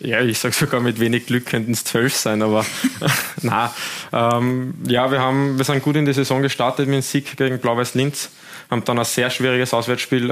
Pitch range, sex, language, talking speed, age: 115-130 Hz, male, German, 205 wpm, 20-39